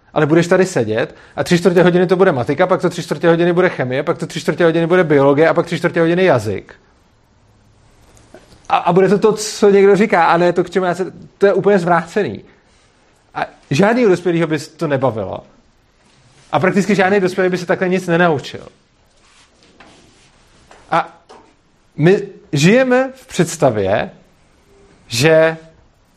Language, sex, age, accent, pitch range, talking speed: Czech, male, 40-59, native, 160-195 Hz, 160 wpm